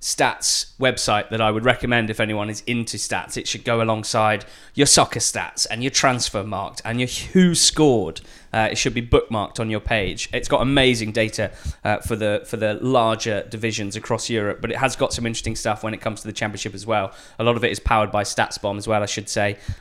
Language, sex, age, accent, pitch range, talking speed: English, male, 20-39, British, 105-120 Hz, 225 wpm